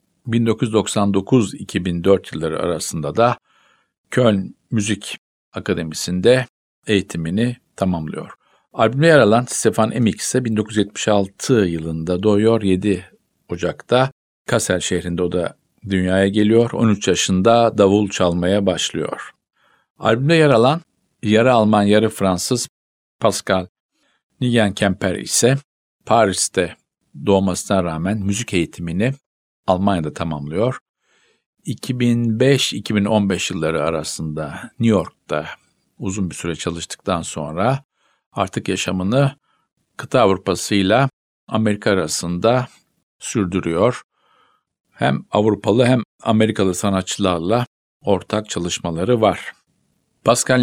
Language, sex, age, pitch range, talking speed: Turkish, male, 50-69, 95-115 Hz, 90 wpm